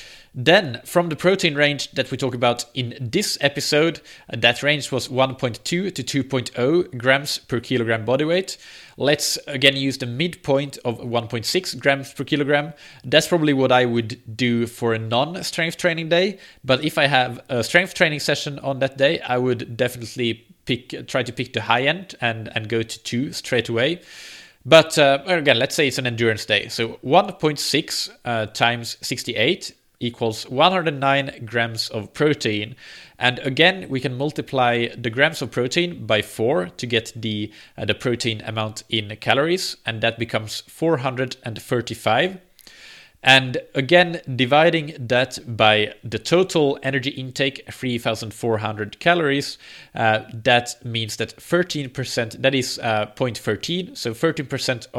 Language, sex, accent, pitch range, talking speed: English, male, Norwegian, 115-145 Hz, 145 wpm